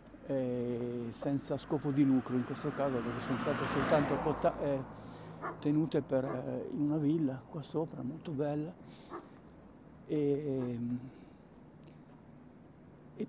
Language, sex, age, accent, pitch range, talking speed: Italian, male, 50-69, native, 120-140 Hz, 115 wpm